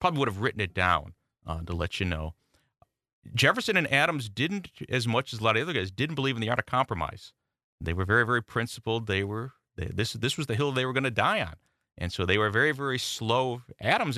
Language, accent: English, American